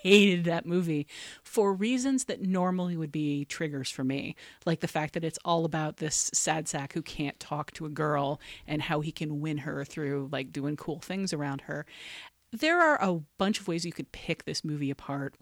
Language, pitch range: English, 150-185 Hz